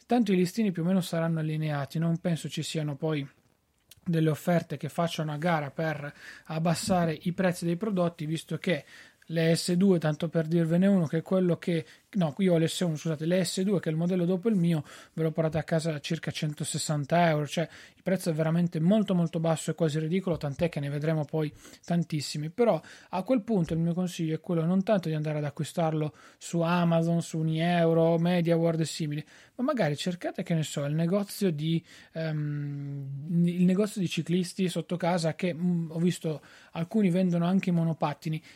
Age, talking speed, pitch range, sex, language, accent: 30-49, 195 wpm, 160-185 Hz, male, Italian, native